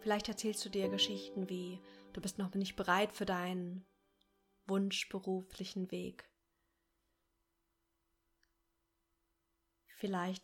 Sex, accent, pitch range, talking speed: female, German, 185-220 Hz, 90 wpm